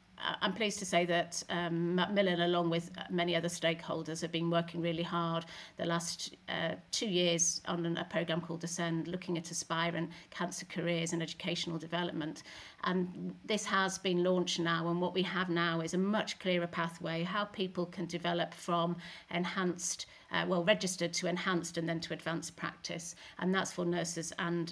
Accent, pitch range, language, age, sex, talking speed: British, 170-180 Hz, English, 50-69, female, 175 wpm